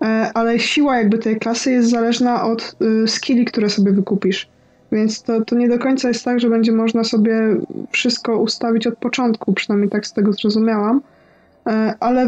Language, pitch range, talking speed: Polish, 215-240 Hz, 165 wpm